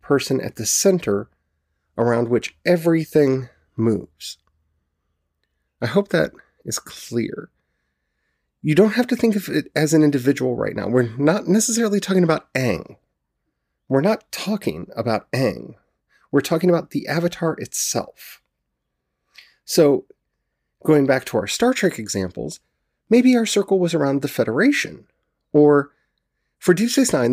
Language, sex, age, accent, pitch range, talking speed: English, male, 30-49, American, 110-170 Hz, 135 wpm